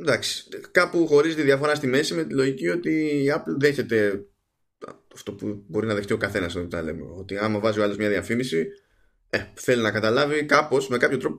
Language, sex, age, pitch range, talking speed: Greek, male, 20-39, 100-145 Hz, 195 wpm